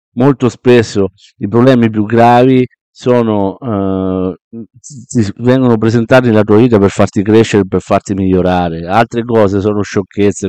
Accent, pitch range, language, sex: native, 95-115 Hz, Italian, male